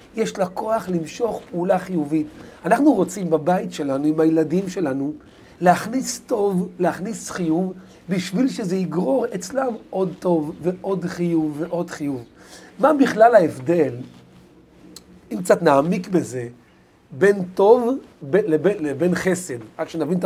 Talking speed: 125 wpm